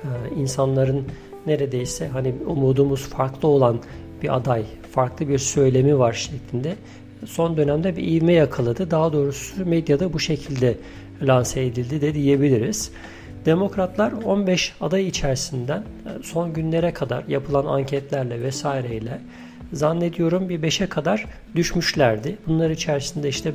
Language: Turkish